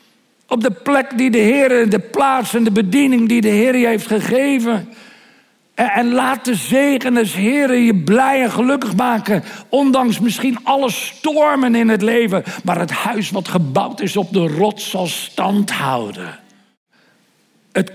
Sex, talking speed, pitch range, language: male, 165 wpm, 195-255 Hz, Dutch